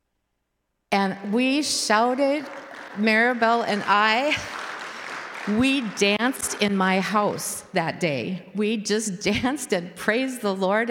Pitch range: 170-225 Hz